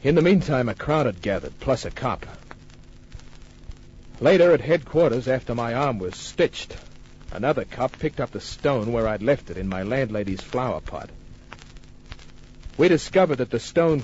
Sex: male